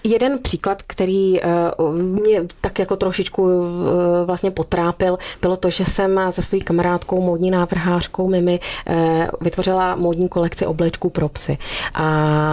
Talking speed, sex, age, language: 125 wpm, female, 30-49, Czech